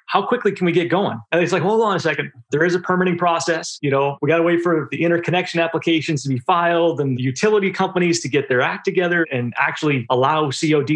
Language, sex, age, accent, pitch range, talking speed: English, male, 30-49, American, 140-180 Hz, 240 wpm